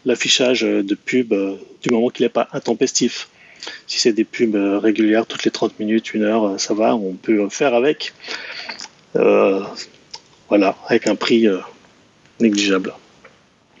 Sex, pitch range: male, 110-145 Hz